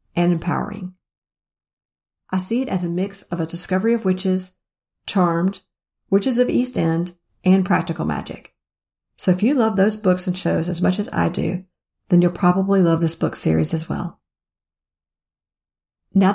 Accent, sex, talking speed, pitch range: American, female, 160 wpm, 170-205 Hz